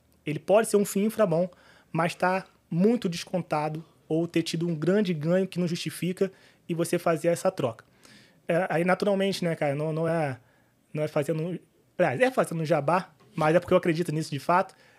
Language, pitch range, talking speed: Portuguese, 150-185 Hz, 190 wpm